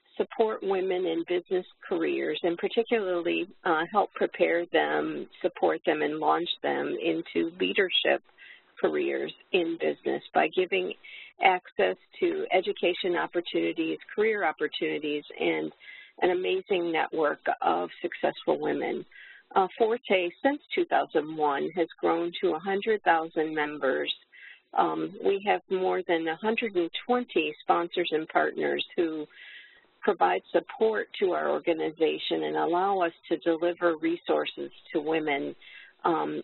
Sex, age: female, 50-69